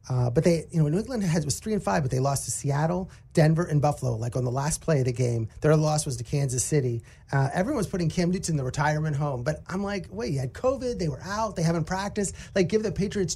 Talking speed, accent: 275 wpm, American